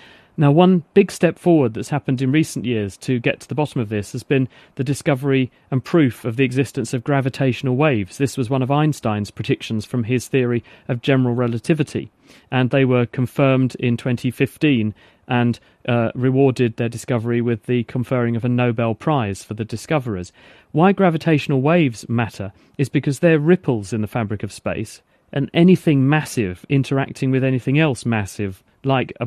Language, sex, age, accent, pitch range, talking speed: English, male, 40-59, British, 120-145 Hz, 175 wpm